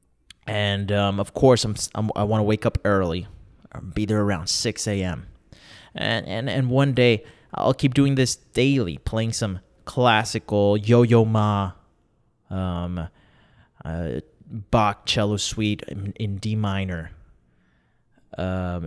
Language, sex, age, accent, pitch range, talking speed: English, male, 20-39, American, 100-130 Hz, 140 wpm